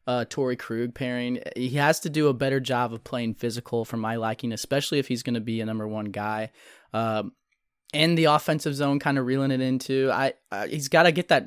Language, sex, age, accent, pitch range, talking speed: English, male, 20-39, American, 120-135 Hz, 230 wpm